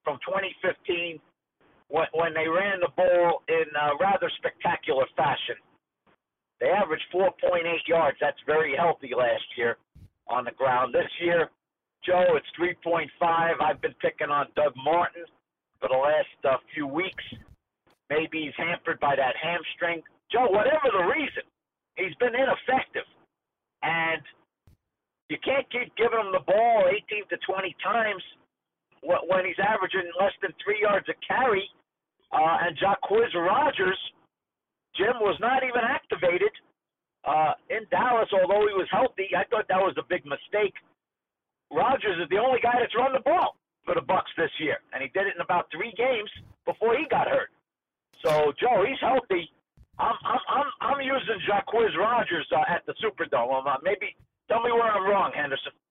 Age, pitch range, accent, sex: 50-69, 170-255 Hz, American, male